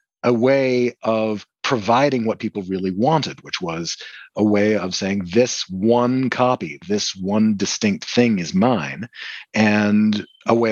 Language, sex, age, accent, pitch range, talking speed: English, male, 40-59, American, 100-125 Hz, 145 wpm